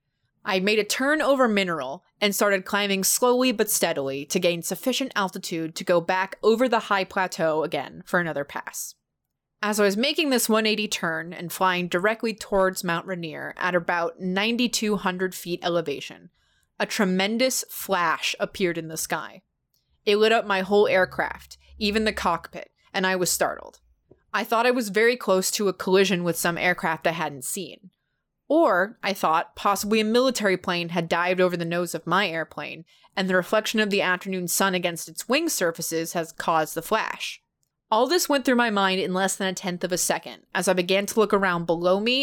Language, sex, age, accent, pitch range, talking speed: English, female, 20-39, American, 175-215 Hz, 190 wpm